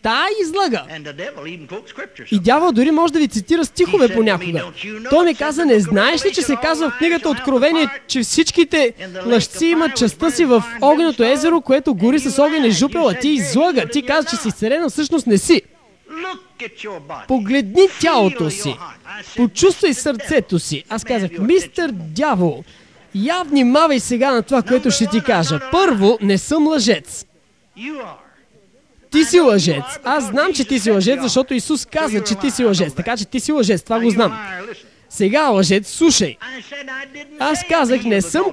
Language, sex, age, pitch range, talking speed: English, male, 20-39, 225-315 Hz, 155 wpm